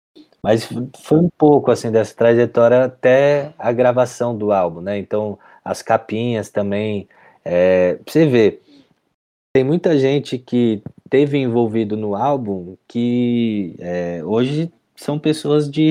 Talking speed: 130 wpm